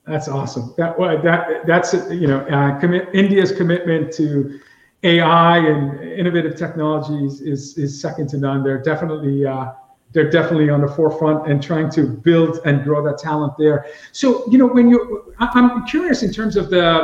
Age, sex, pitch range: 50-69, male, 155-195 Hz